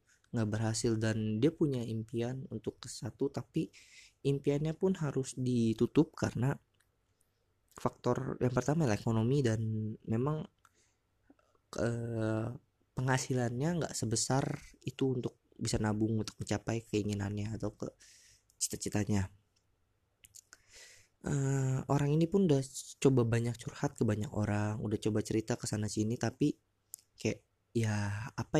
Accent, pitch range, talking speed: native, 105-130 Hz, 110 wpm